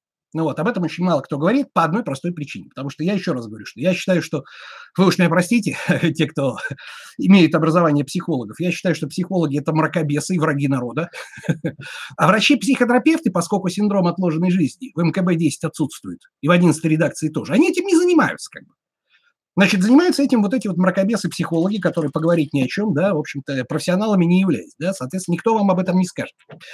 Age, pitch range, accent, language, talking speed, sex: 30-49, 160-205 Hz, native, Russian, 195 wpm, male